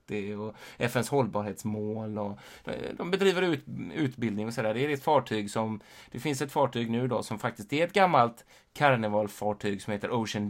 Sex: male